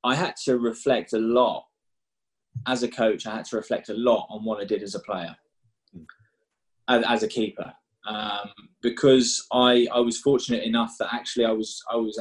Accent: British